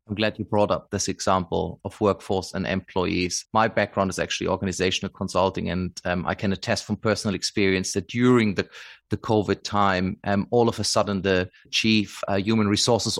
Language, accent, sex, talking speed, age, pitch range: English, German, male, 185 wpm, 30-49, 100-130 Hz